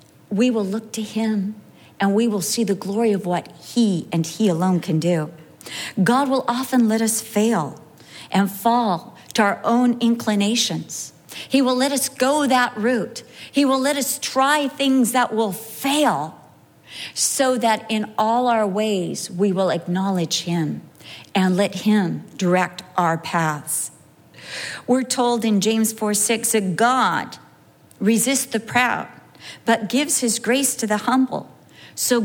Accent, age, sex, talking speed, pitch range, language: American, 50-69, female, 155 wpm, 170-240 Hz, English